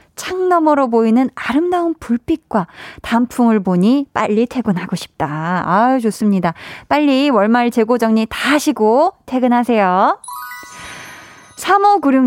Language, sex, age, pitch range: Korean, female, 20-39, 195-270 Hz